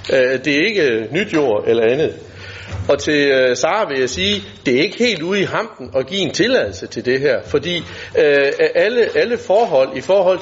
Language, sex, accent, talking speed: Danish, male, native, 195 wpm